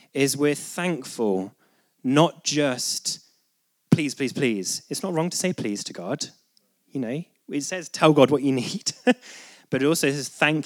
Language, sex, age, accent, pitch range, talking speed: English, male, 30-49, British, 115-160 Hz, 170 wpm